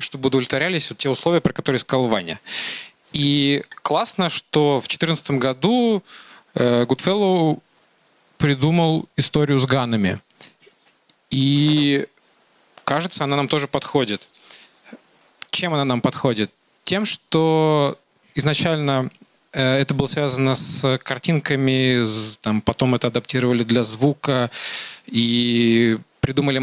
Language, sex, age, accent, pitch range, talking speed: Russian, male, 20-39, native, 130-155 Hz, 100 wpm